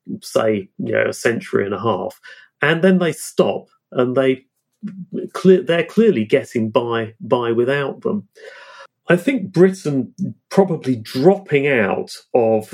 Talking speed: 130 wpm